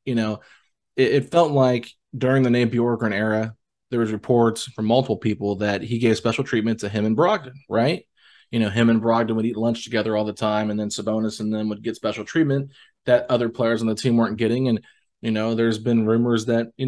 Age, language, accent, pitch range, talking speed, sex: 20-39, English, American, 110-125 Hz, 225 wpm, male